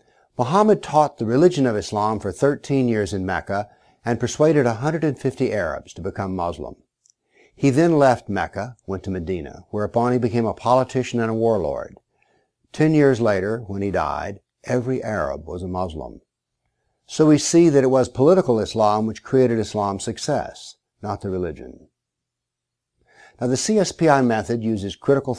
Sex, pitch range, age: male, 105-135 Hz, 60-79